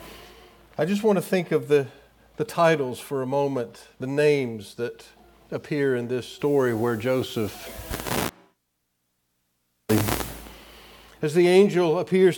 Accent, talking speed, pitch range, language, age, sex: American, 120 wpm, 135-160 Hz, English, 50-69, male